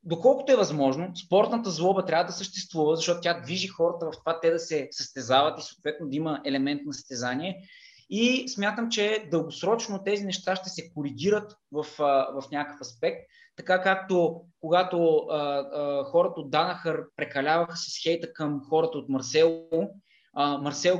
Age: 20-39